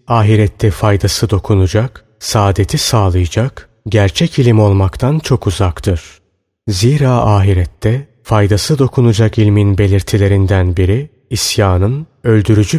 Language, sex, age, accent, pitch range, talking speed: Turkish, male, 30-49, native, 100-125 Hz, 90 wpm